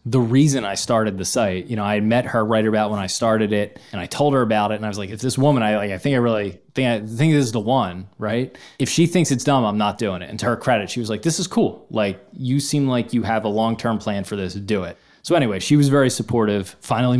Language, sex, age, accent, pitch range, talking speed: English, male, 20-39, American, 95-120 Hz, 285 wpm